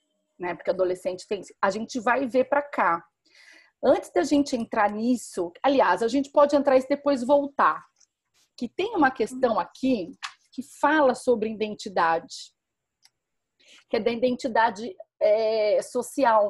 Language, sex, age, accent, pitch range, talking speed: Portuguese, female, 40-59, Brazilian, 200-280 Hz, 135 wpm